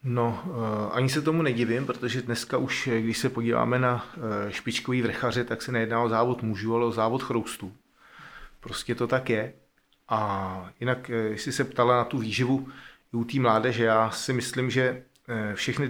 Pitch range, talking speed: 110-125 Hz, 175 wpm